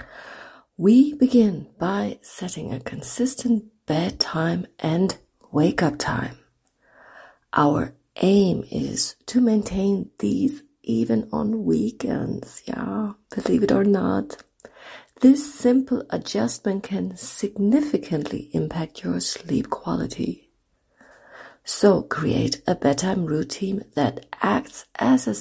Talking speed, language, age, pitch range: 100 wpm, English, 40-59, 160-235 Hz